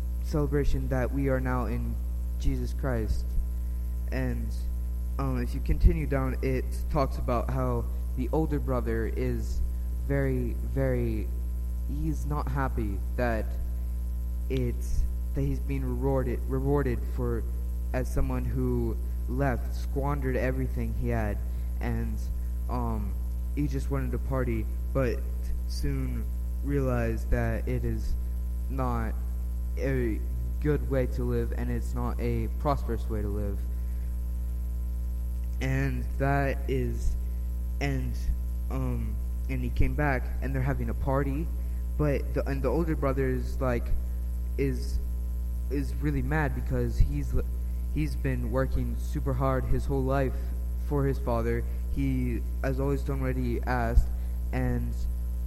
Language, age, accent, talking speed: English, 20-39, American, 125 wpm